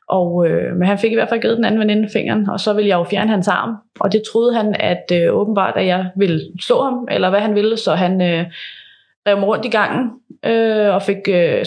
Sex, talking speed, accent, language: female, 245 wpm, native, Danish